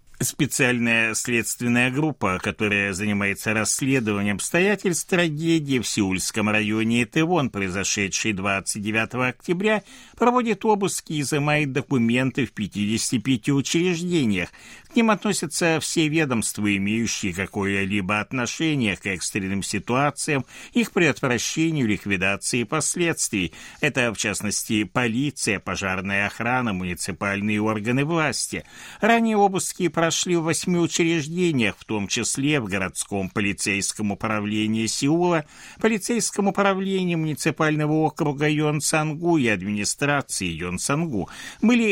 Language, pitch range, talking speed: Russian, 105-165 Hz, 100 wpm